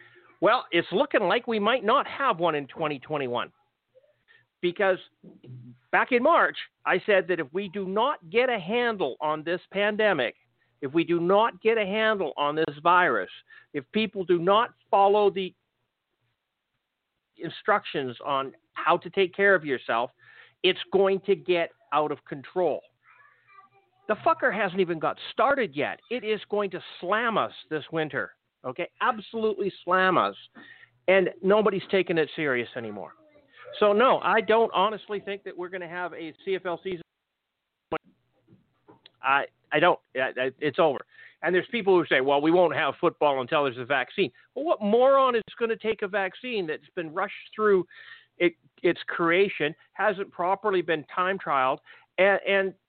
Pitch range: 165-215 Hz